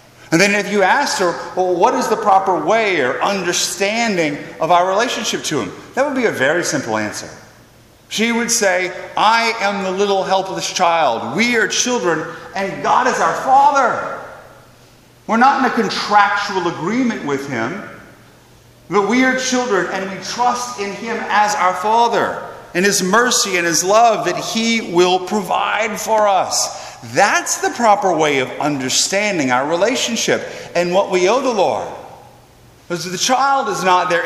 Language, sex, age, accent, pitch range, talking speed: English, male, 40-59, American, 170-225 Hz, 165 wpm